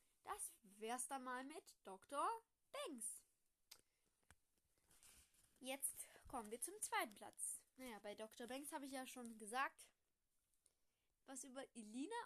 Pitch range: 250-330 Hz